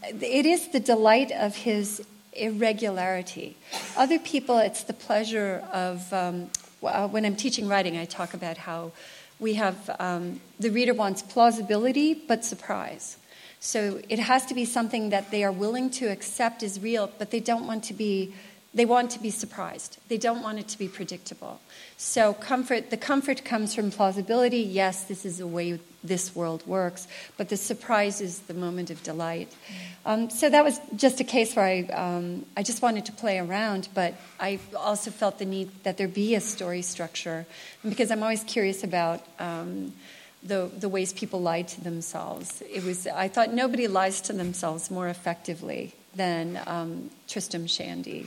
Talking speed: 175 wpm